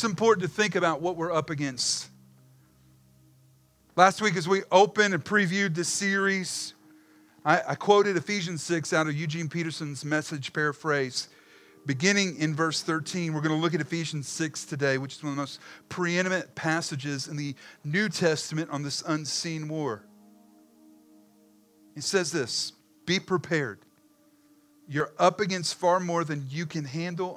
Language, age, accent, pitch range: English, 40-59, American, 130-170 Hz